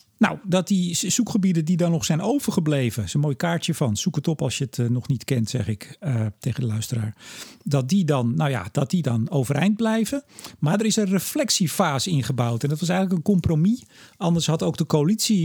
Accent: Dutch